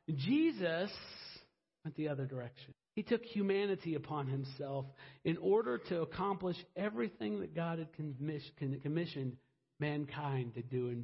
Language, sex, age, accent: English, male, 50-69, American